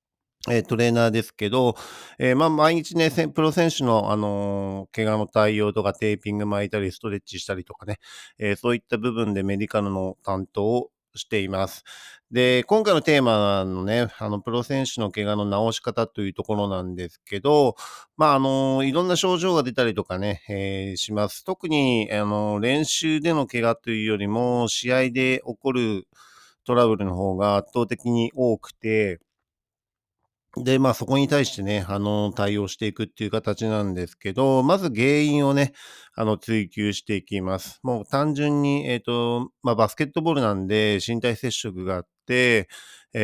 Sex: male